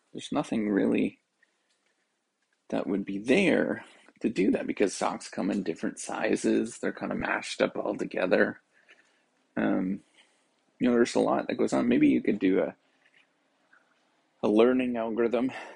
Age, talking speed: 30-49, 150 wpm